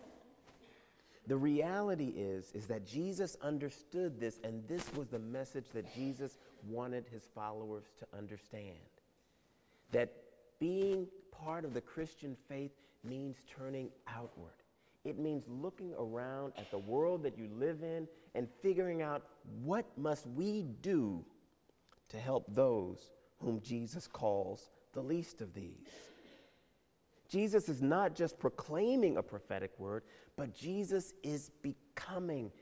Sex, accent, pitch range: male, American, 110-165 Hz